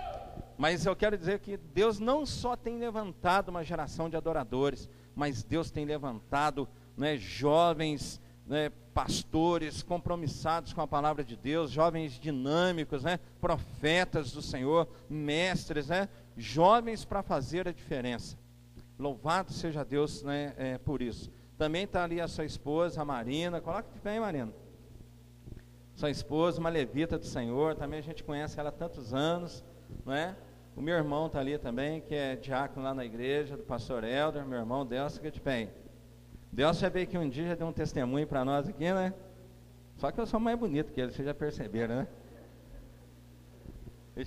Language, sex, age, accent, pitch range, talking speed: Portuguese, male, 50-69, Brazilian, 130-165 Hz, 170 wpm